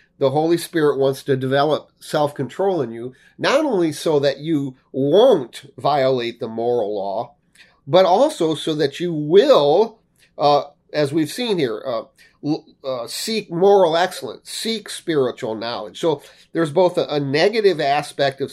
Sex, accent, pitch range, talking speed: male, American, 135-180 Hz, 150 wpm